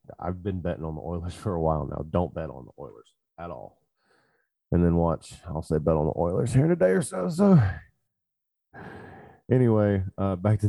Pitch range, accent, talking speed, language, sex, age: 80-90 Hz, American, 210 wpm, English, male, 20-39